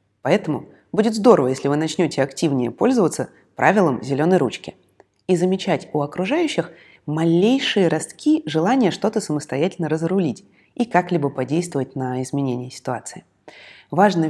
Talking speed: 120 wpm